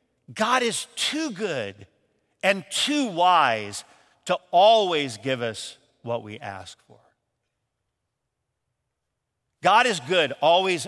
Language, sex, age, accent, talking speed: English, male, 50-69, American, 105 wpm